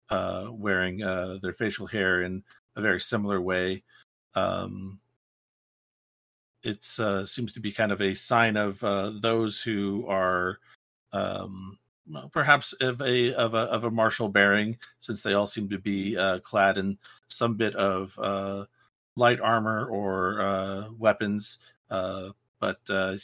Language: English